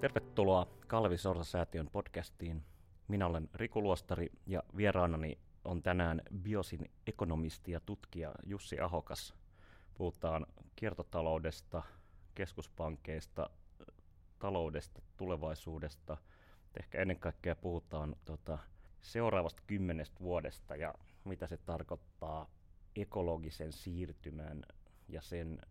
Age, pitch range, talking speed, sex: 30-49, 80-90 Hz, 90 wpm, male